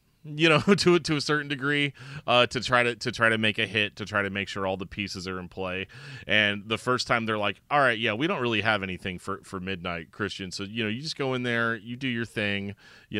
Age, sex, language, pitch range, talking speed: 30-49, male, English, 100-125 Hz, 270 wpm